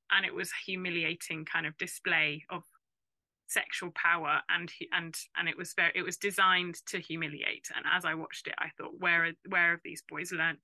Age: 20-39